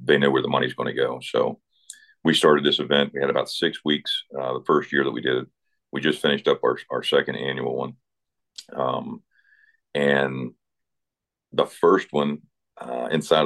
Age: 40-59